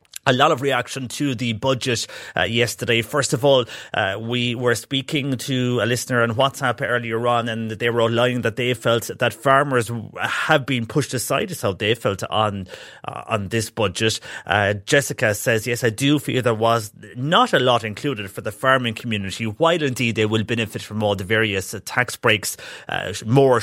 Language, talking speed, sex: English, 195 wpm, male